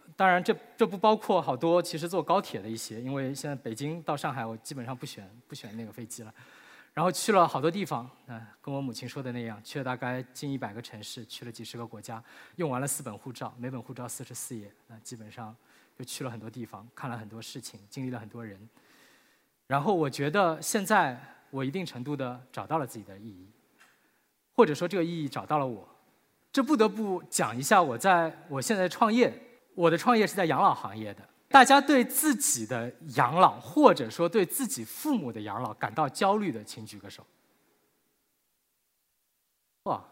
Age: 20-39